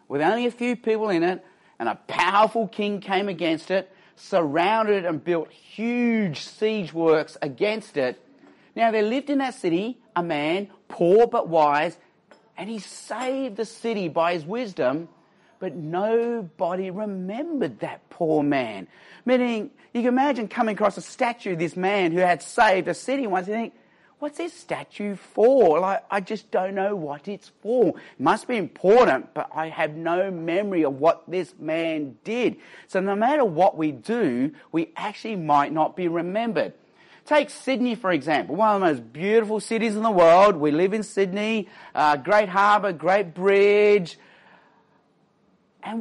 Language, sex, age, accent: English, male, 40-59, Australian